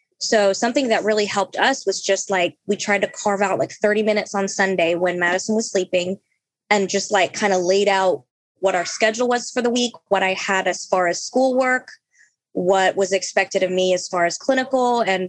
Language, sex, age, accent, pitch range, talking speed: English, female, 20-39, American, 190-225 Hz, 210 wpm